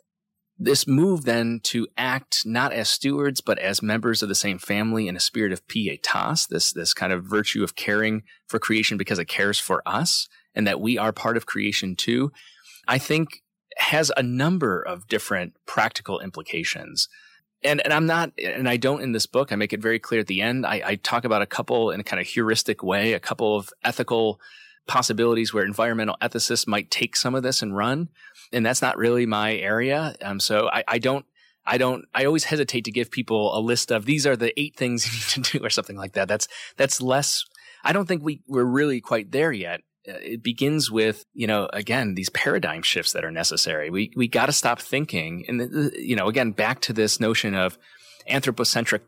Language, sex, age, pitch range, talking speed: English, male, 30-49, 110-135 Hz, 210 wpm